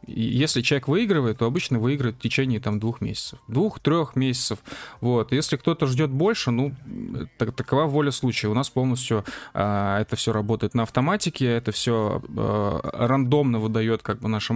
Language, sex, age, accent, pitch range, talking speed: Russian, male, 20-39, native, 110-140 Hz, 165 wpm